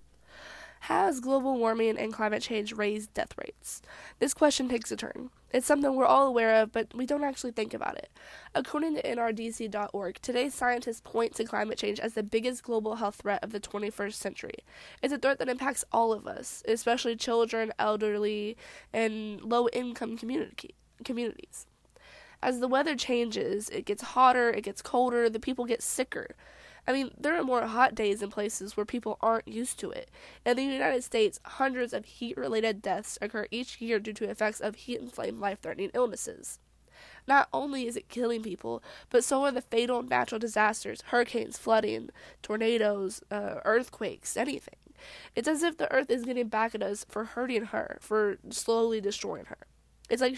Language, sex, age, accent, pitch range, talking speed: English, female, 10-29, American, 215-255 Hz, 175 wpm